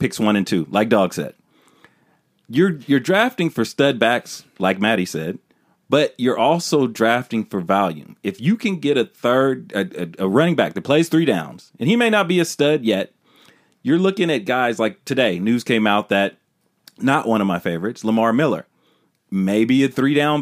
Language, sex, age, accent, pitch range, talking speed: English, male, 40-59, American, 110-160 Hz, 195 wpm